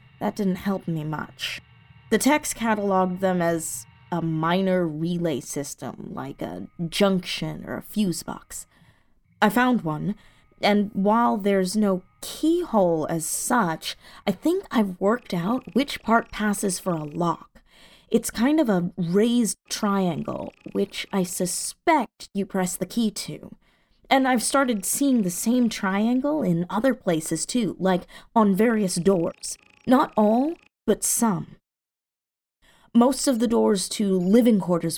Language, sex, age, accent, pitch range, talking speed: English, female, 20-39, American, 165-220 Hz, 140 wpm